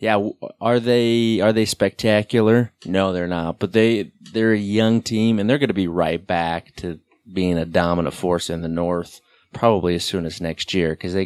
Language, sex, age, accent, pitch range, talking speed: English, male, 30-49, American, 95-125 Hz, 205 wpm